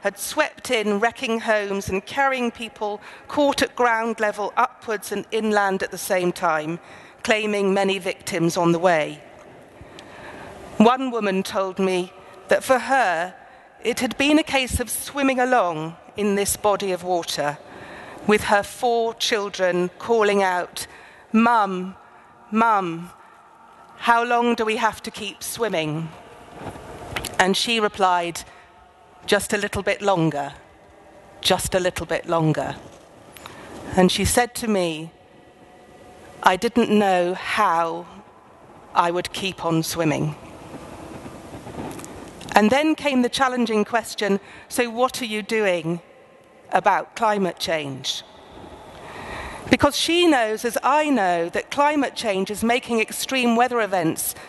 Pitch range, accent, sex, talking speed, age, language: 180-235 Hz, British, female, 130 wpm, 40-59, English